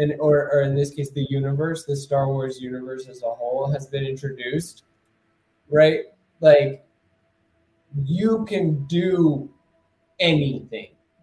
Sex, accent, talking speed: male, American, 125 wpm